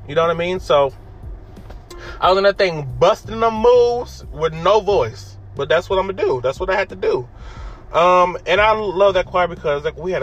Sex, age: male, 20-39